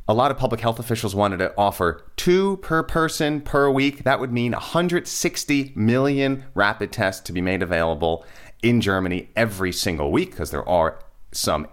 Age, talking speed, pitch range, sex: 30-49, 175 wpm, 90-125 Hz, male